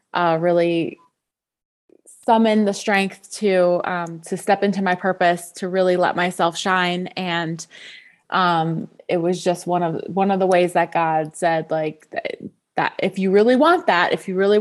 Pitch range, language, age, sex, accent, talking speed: 175-210 Hz, English, 20-39, female, American, 170 wpm